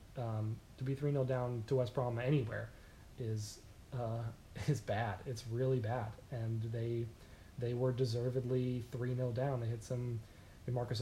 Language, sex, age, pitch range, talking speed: English, male, 20-39, 110-130 Hz, 160 wpm